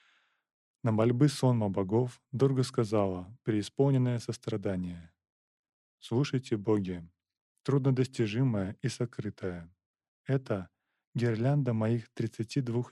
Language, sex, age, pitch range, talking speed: Russian, male, 20-39, 95-125 Hz, 80 wpm